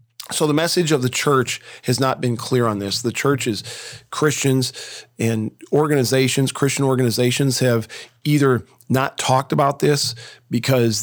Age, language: 40-59, English